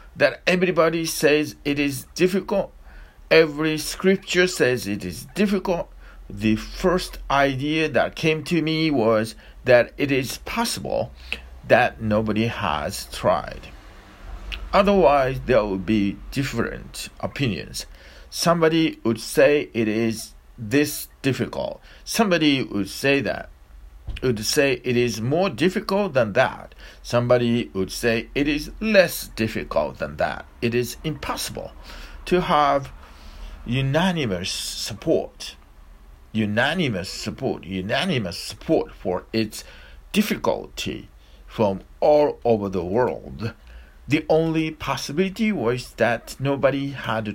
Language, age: English, 50-69